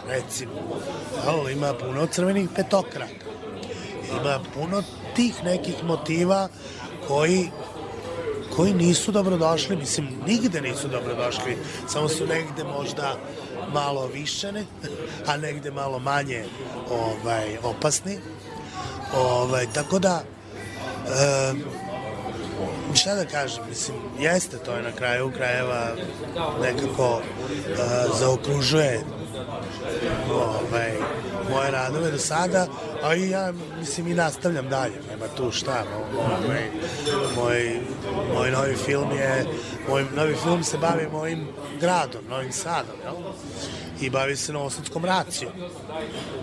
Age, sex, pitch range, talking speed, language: 30-49, male, 130-165 Hz, 105 wpm, English